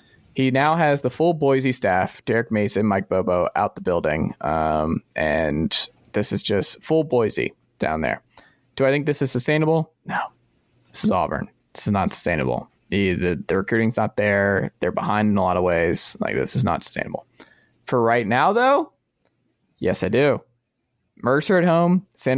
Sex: male